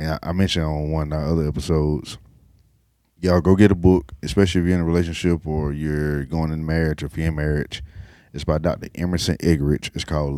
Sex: male